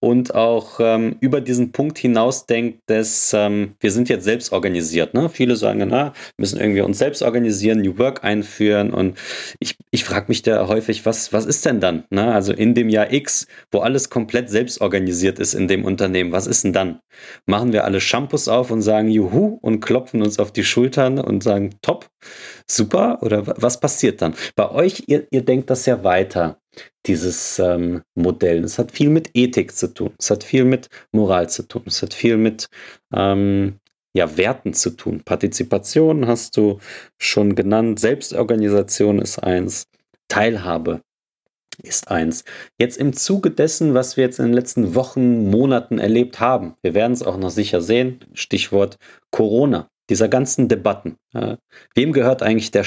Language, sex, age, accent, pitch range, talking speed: German, male, 30-49, German, 100-125 Hz, 175 wpm